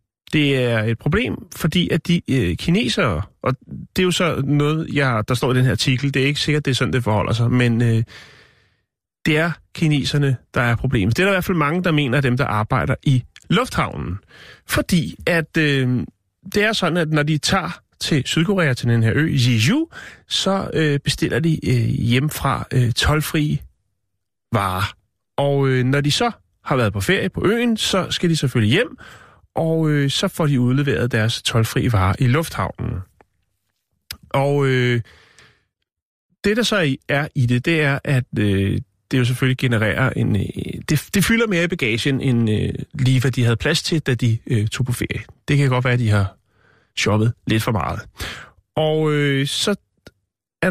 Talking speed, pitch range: 195 wpm, 115-155 Hz